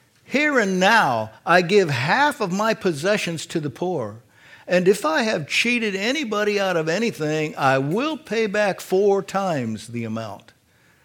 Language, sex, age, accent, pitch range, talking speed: English, male, 60-79, American, 125-185 Hz, 155 wpm